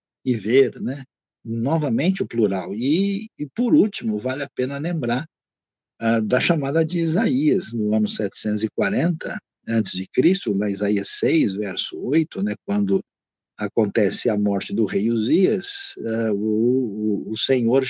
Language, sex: Portuguese, male